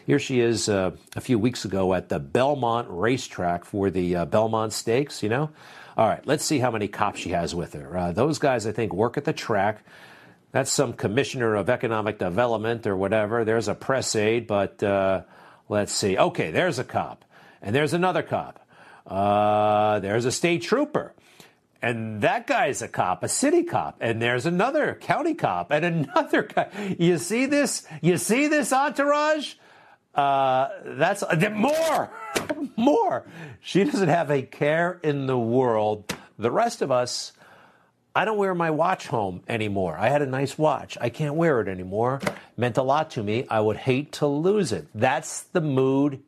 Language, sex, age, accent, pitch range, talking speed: English, male, 50-69, American, 105-150 Hz, 180 wpm